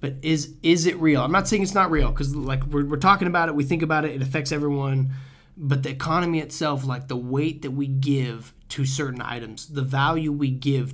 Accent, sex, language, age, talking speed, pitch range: American, male, English, 20-39, 230 wpm, 130-150 Hz